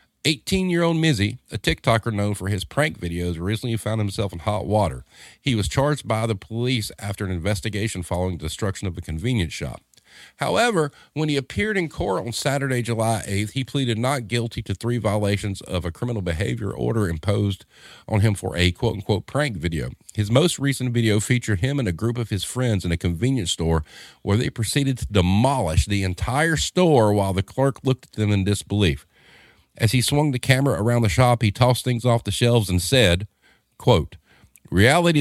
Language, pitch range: English, 100-130 Hz